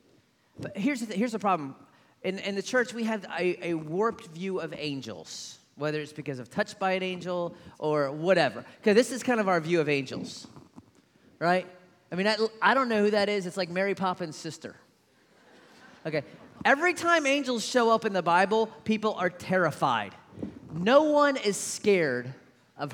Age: 30-49